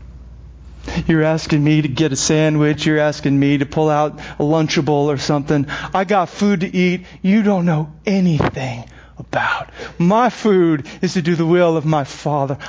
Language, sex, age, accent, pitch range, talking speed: English, male, 40-59, American, 150-245 Hz, 175 wpm